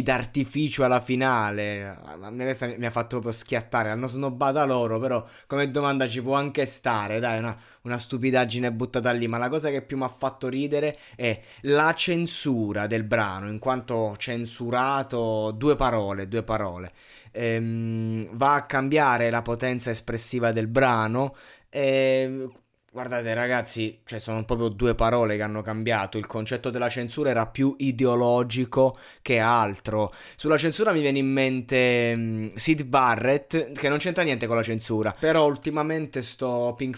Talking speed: 155 wpm